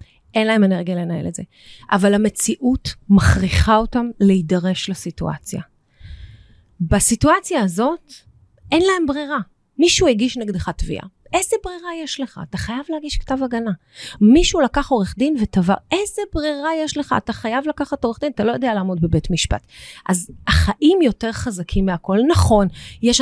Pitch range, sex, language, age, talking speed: 185-250 Hz, female, Hebrew, 30-49, 145 wpm